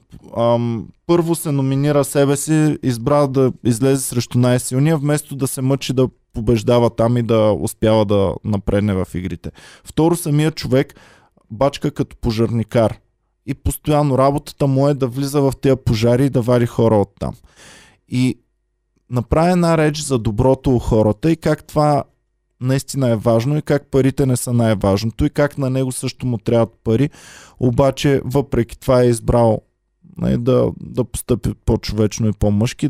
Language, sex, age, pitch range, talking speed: Bulgarian, male, 20-39, 115-145 Hz, 155 wpm